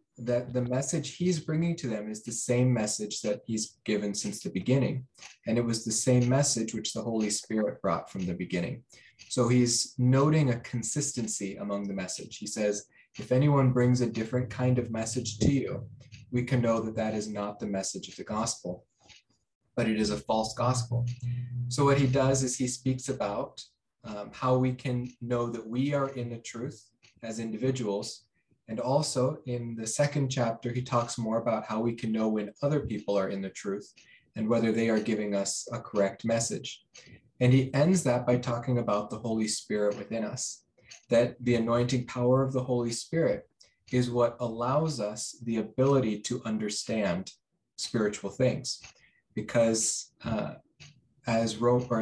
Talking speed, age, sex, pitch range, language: 180 wpm, 20-39, male, 110-130 Hz, English